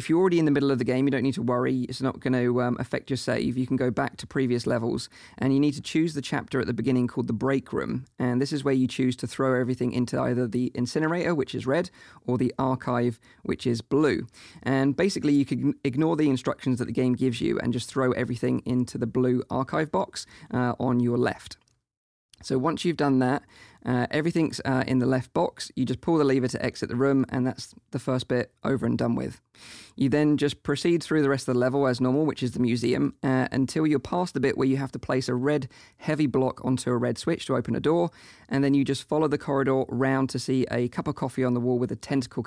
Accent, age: British, 20-39